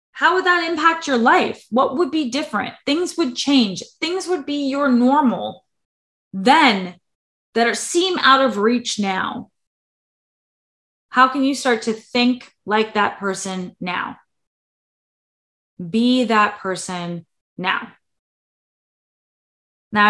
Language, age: English, 20-39